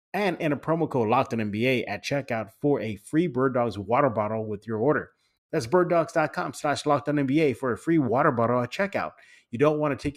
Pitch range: 115-145 Hz